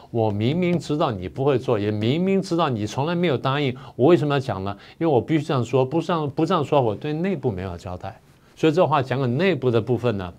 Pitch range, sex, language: 125-165 Hz, male, Chinese